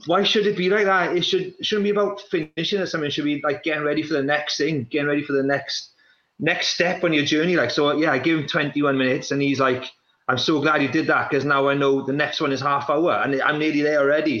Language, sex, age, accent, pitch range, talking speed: English, male, 30-49, British, 125-160 Hz, 275 wpm